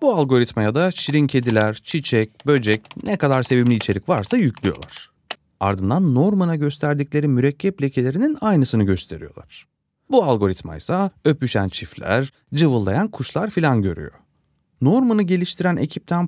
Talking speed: 120 wpm